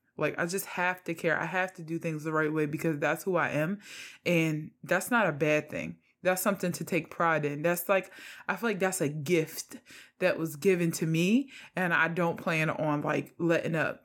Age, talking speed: 20-39, 220 wpm